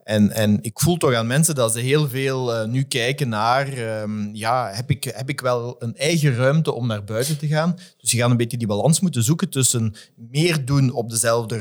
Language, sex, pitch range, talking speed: English, male, 105-130 Hz, 220 wpm